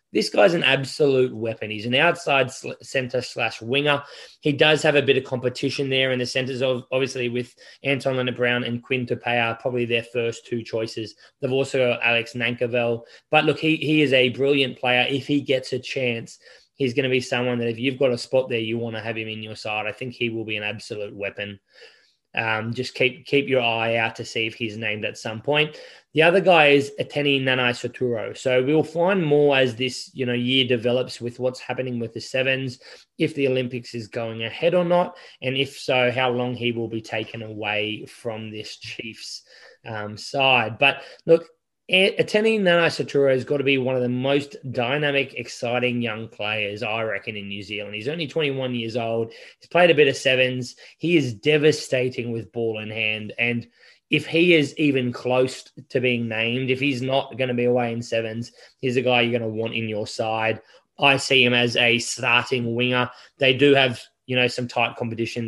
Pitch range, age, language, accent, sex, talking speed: 115-135 Hz, 20-39, English, Australian, male, 205 wpm